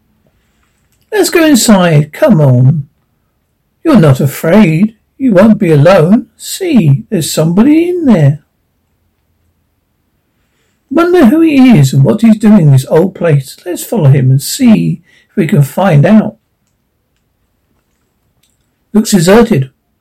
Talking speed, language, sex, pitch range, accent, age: 125 wpm, English, male, 150-220 Hz, British, 60-79